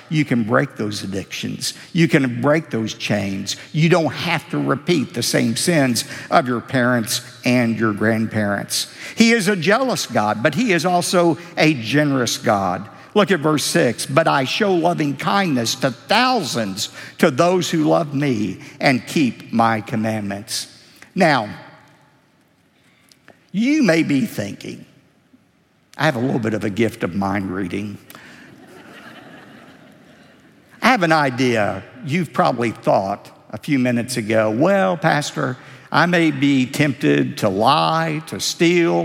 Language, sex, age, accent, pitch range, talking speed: English, male, 60-79, American, 115-165 Hz, 140 wpm